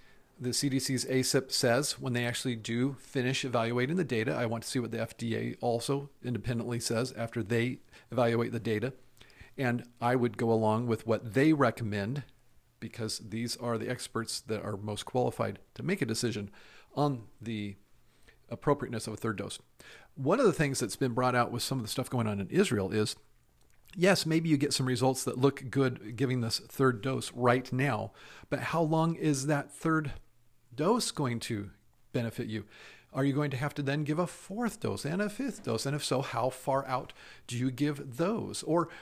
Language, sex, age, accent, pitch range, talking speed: English, male, 40-59, American, 115-140 Hz, 195 wpm